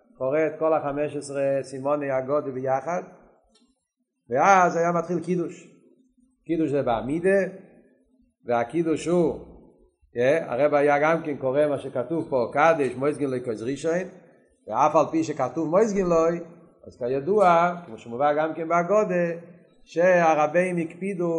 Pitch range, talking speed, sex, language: 135-170 Hz, 130 wpm, male, Hebrew